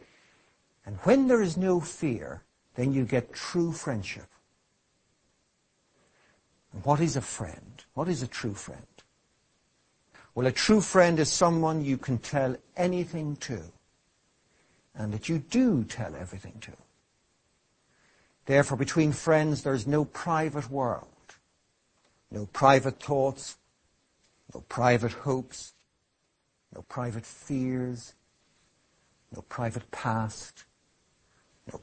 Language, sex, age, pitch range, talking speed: English, male, 60-79, 115-155 Hz, 110 wpm